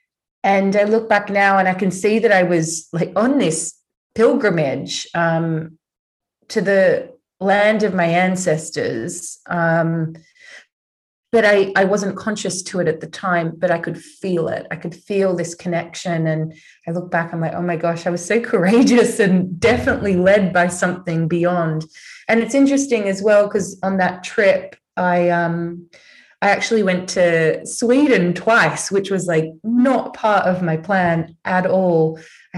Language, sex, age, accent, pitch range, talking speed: English, female, 20-39, Australian, 170-205 Hz, 170 wpm